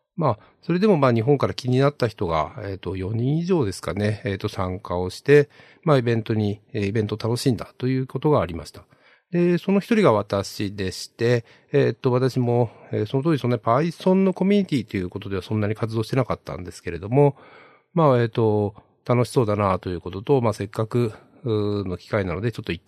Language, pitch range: Japanese, 100-140 Hz